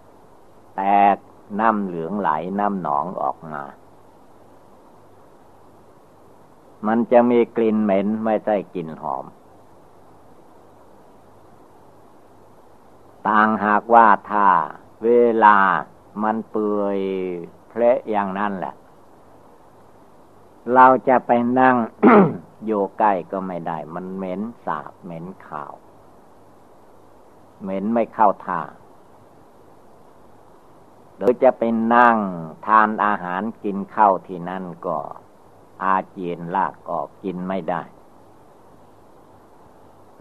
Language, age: Thai, 60-79